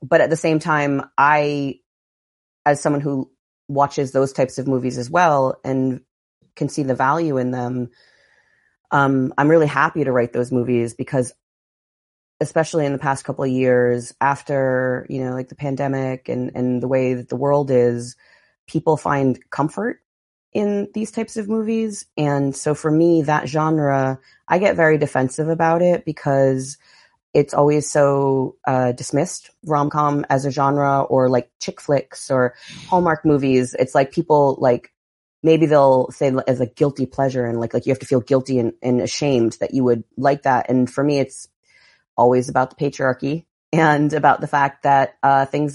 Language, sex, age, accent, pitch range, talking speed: English, female, 30-49, American, 130-150 Hz, 175 wpm